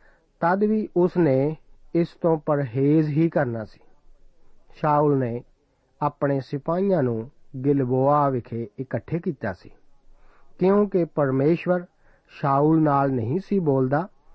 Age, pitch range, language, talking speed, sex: 50-69, 130-170 Hz, Punjabi, 110 wpm, male